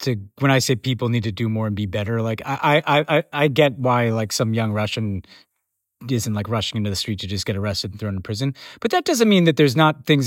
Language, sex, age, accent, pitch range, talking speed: English, male, 30-49, American, 115-150 Hz, 255 wpm